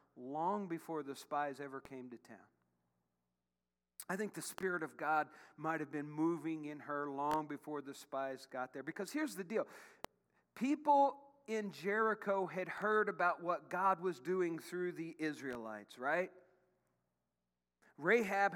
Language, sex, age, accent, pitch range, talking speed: English, male, 40-59, American, 140-185 Hz, 145 wpm